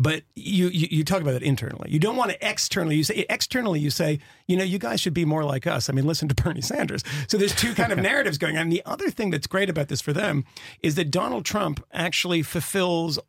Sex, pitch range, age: male, 135-180 Hz, 40-59